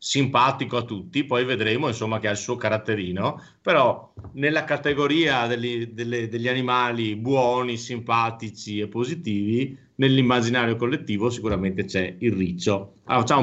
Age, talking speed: 40-59, 125 wpm